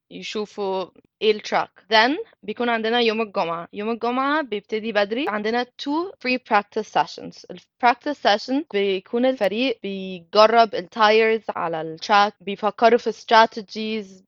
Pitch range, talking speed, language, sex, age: 205-255 Hz, 125 wpm, English, female, 20-39